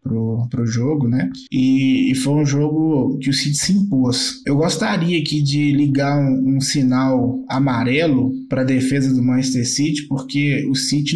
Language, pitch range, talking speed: Portuguese, 130-170 Hz, 170 wpm